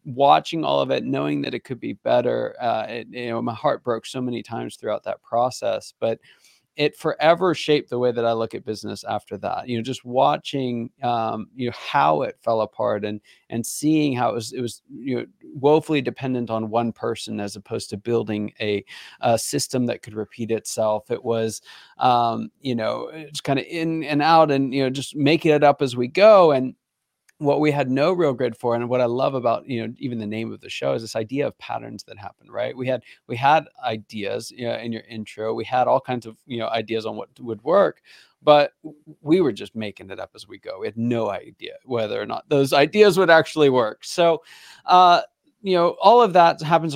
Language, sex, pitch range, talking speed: English, male, 115-145 Hz, 225 wpm